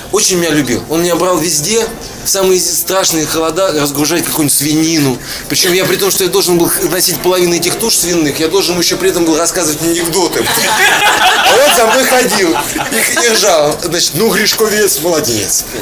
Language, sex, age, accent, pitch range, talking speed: Russian, male, 20-39, native, 140-175 Hz, 165 wpm